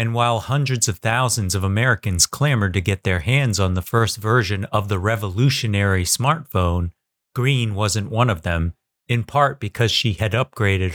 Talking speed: 170 wpm